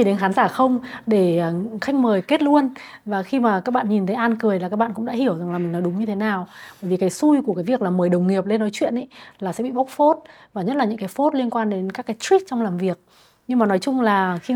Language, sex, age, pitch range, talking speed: Vietnamese, female, 20-39, 185-245 Hz, 295 wpm